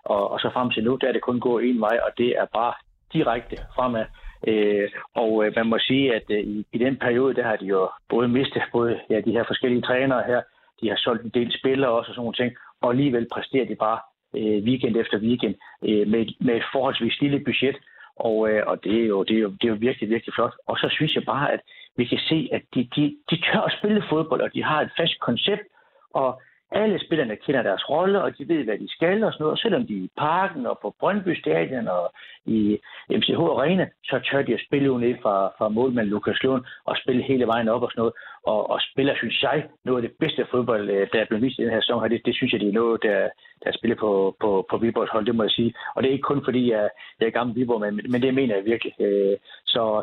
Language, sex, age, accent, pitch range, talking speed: Danish, male, 60-79, native, 110-130 Hz, 245 wpm